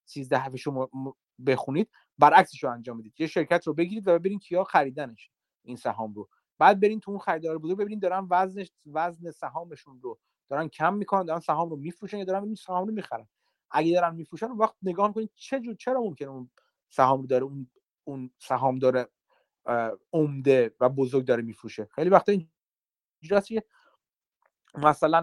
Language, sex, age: Persian, male, 30-49